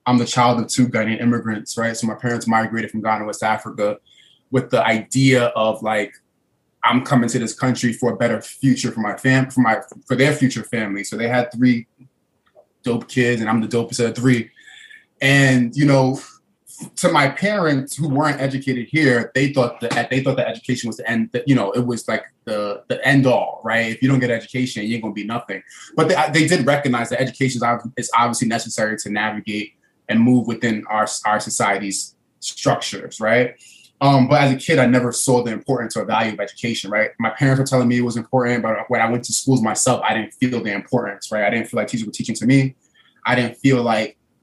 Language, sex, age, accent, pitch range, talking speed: English, male, 20-39, American, 110-130 Hz, 220 wpm